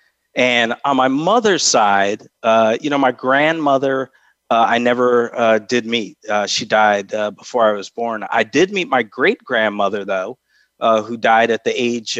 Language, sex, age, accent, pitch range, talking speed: English, male, 40-59, American, 110-130 Hz, 180 wpm